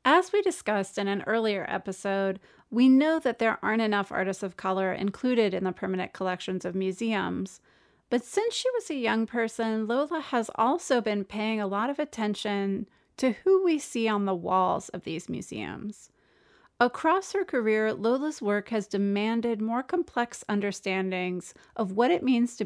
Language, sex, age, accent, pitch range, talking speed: English, female, 30-49, American, 195-255 Hz, 170 wpm